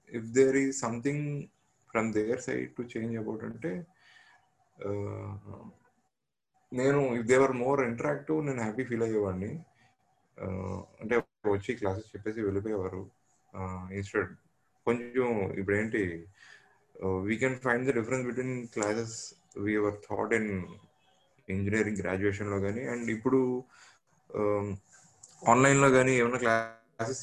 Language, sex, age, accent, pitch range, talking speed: English, male, 20-39, Indian, 100-125 Hz, 80 wpm